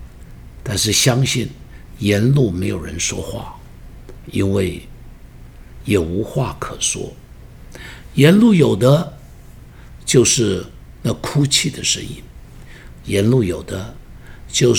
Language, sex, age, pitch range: Chinese, male, 60-79, 85-135 Hz